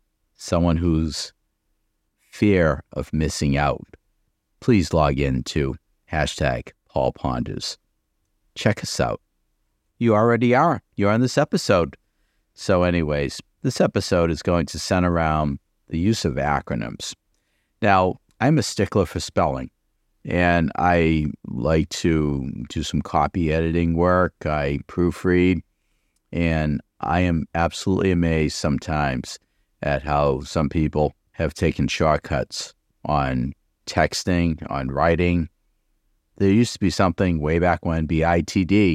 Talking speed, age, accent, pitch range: 120 wpm, 50-69, American, 75-90 Hz